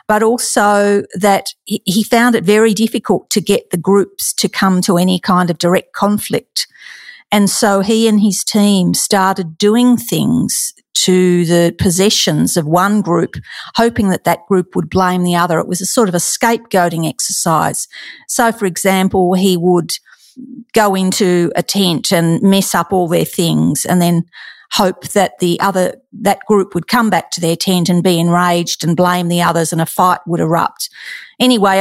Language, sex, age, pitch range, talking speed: English, female, 50-69, 180-205 Hz, 175 wpm